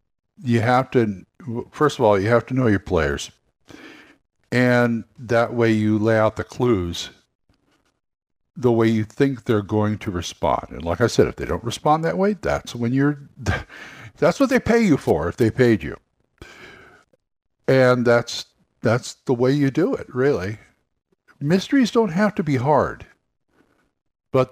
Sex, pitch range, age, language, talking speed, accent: male, 110-140 Hz, 60-79, English, 165 wpm, American